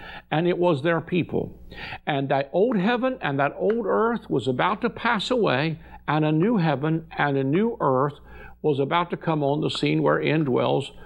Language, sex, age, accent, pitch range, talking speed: English, male, 60-79, American, 140-190 Hz, 190 wpm